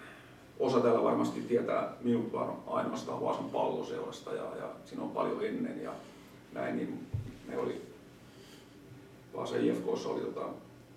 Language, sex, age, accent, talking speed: Finnish, male, 40-59, native, 125 wpm